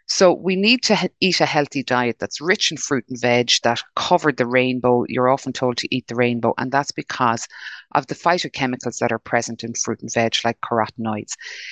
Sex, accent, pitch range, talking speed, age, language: female, Irish, 115-145 Hz, 210 wpm, 30-49, English